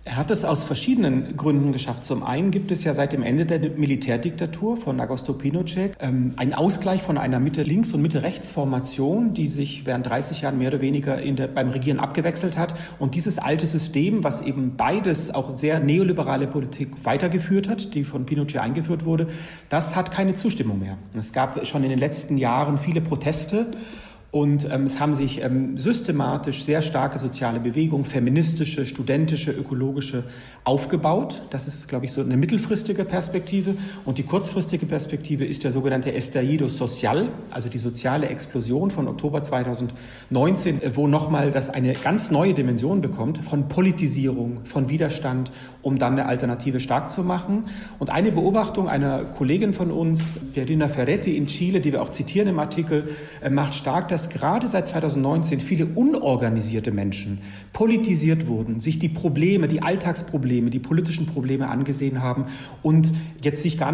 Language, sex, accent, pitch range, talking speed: German, male, German, 130-170 Hz, 160 wpm